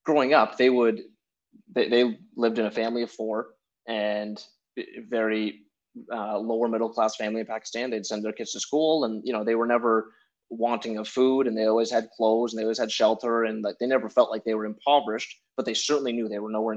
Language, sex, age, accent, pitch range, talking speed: English, male, 20-39, American, 110-130 Hz, 220 wpm